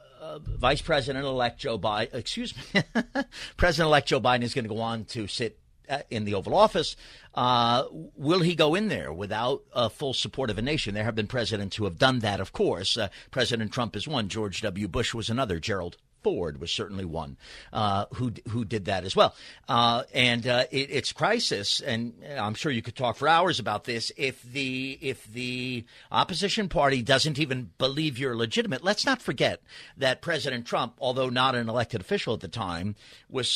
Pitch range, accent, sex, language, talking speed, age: 115-150 Hz, American, male, English, 195 wpm, 50-69